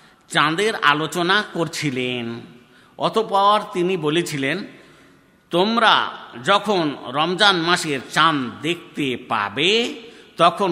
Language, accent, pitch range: Bengali, native, 130-185 Hz